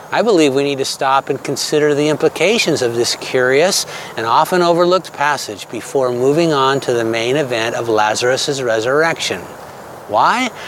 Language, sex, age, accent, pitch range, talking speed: English, male, 60-79, American, 135-180 Hz, 155 wpm